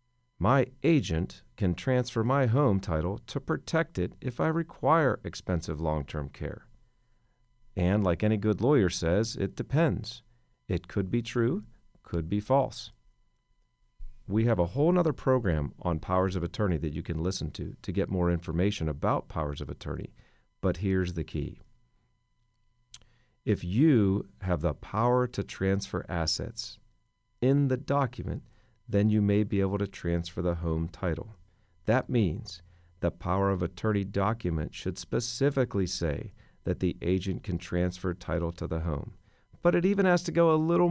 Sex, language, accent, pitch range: male, English, American, 90-125 Hz